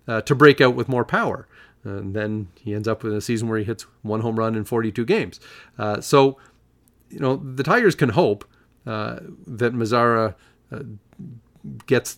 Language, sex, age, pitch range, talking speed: English, male, 40-59, 110-135 Hz, 175 wpm